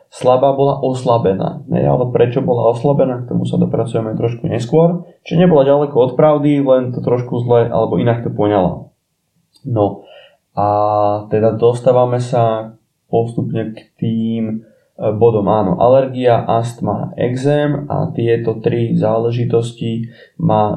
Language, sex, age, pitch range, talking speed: Slovak, male, 20-39, 115-145 Hz, 130 wpm